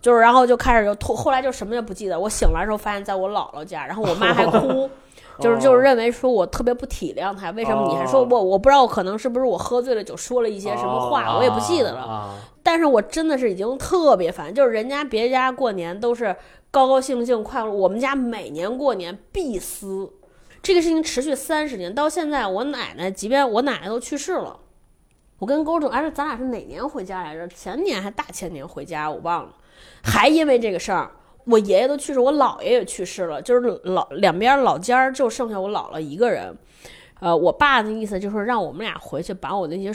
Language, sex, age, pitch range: Chinese, female, 20-39, 195-275 Hz